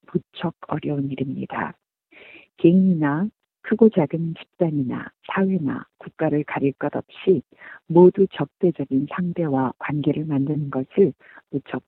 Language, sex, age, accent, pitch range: Korean, female, 50-69, native, 140-185 Hz